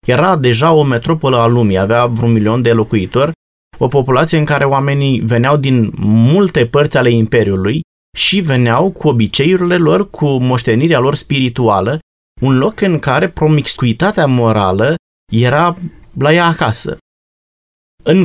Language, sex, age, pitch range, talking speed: Romanian, male, 20-39, 120-175 Hz, 140 wpm